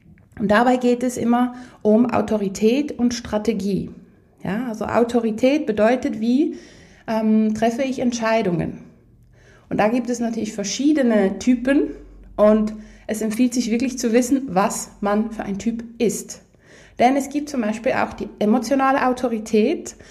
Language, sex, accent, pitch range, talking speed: German, female, German, 205-250 Hz, 135 wpm